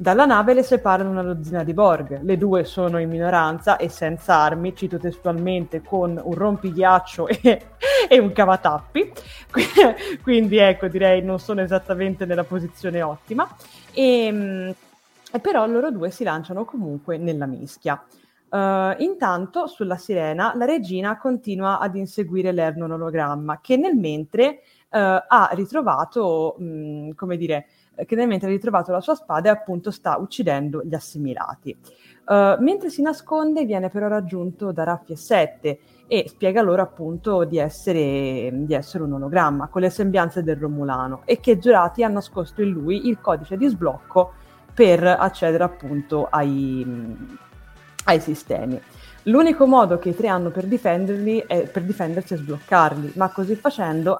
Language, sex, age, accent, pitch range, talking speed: Italian, female, 20-39, native, 160-210 Hz, 145 wpm